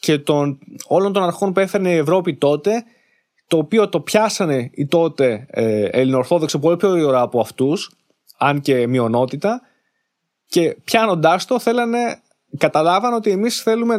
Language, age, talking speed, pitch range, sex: Greek, 20-39, 145 wpm, 145-205 Hz, male